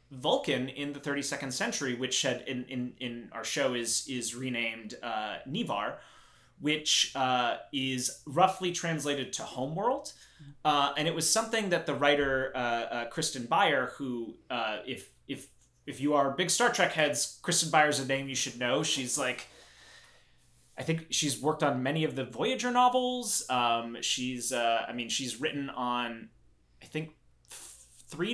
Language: English